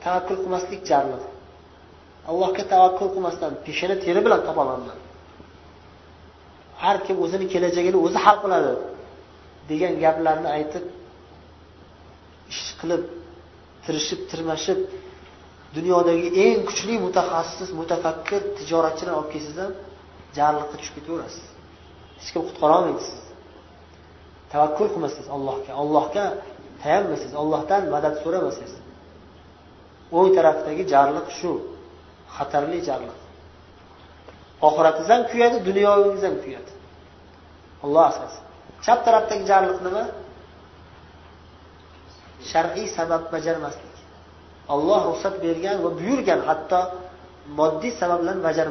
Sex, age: male, 30-49